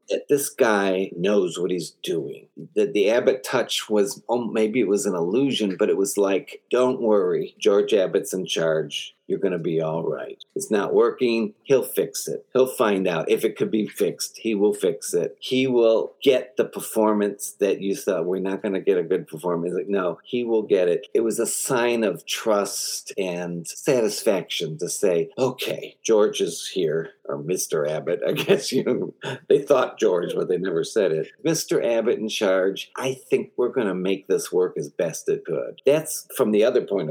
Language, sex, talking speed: English, male, 195 wpm